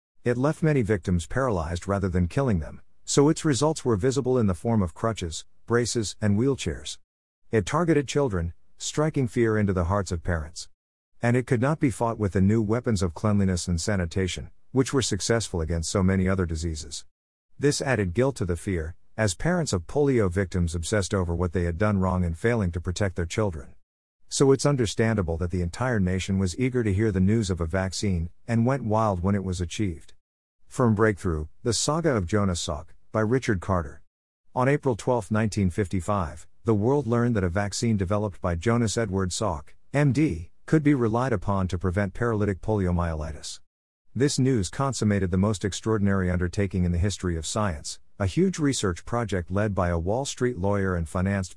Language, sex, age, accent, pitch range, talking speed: English, male, 50-69, American, 90-115 Hz, 185 wpm